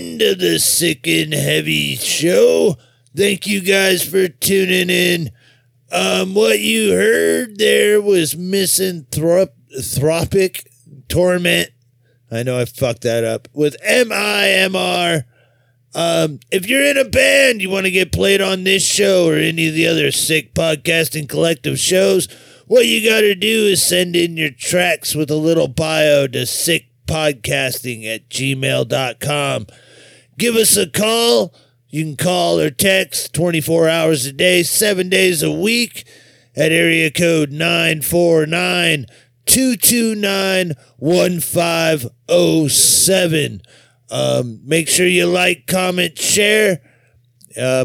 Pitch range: 135-185 Hz